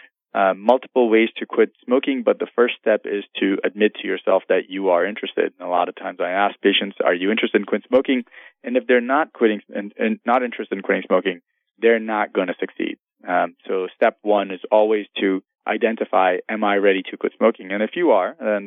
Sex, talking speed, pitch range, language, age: male, 220 wpm, 95-110 Hz, English, 20-39